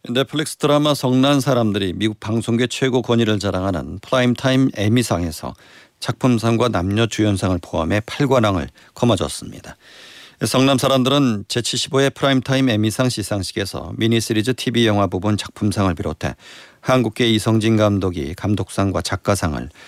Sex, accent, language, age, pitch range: male, native, Korean, 40-59, 100-125 Hz